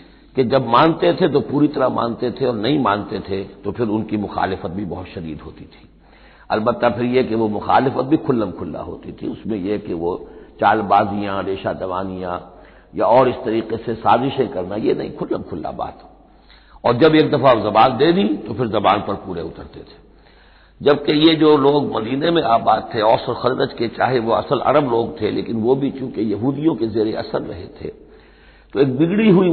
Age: 60-79